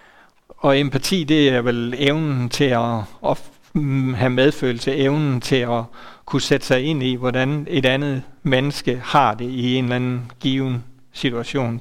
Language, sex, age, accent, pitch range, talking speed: Danish, male, 60-79, native, 125-150 Hz, 150 wpm